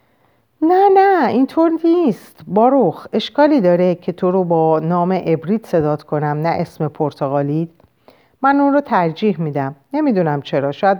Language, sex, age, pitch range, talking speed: Persian, female, 50-69, 150-215 Hz, 140 wpm